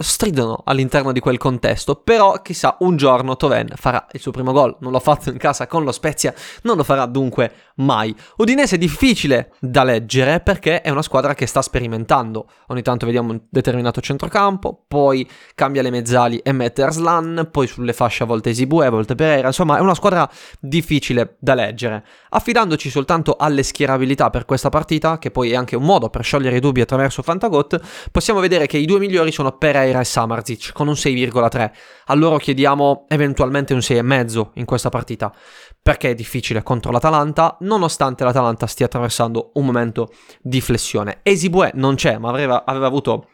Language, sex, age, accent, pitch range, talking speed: Italian, male, 20-39, native, 125-160 Hz, 180 wpm